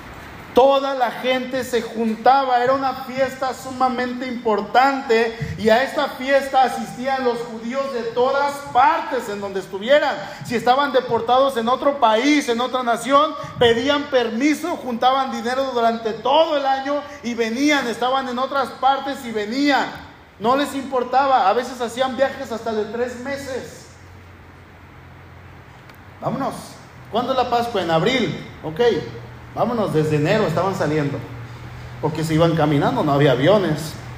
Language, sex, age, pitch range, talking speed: Spanish, male, 40-59, 170-265 Hz, 140 wpm